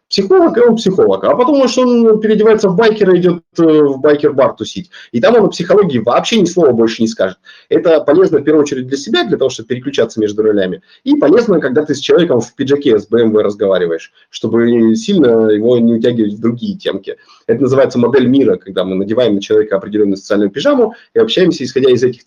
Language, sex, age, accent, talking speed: Russian, male, 30-49, native, 200 wpm